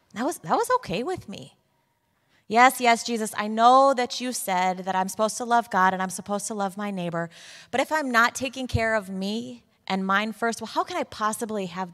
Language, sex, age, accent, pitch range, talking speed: English, female, 20-39, American, 165-215 Hz, 225 wpm